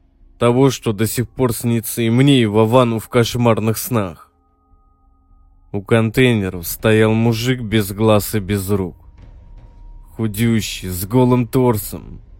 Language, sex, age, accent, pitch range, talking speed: Russian, male, 20-39, native, 95-120 Hz, 125 wpm